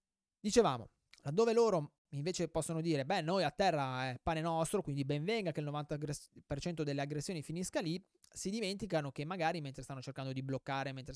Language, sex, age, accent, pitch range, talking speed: Italian, male, 20-39, native, 135-165 Hz, 170 wpm